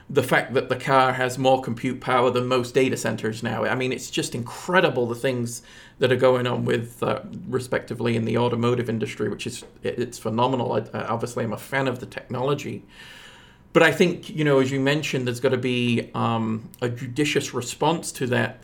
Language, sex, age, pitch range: English, male, 40-59, 120-135 Hz